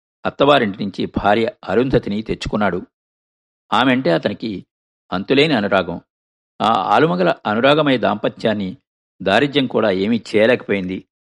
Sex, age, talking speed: male, 50-69, 90 wpm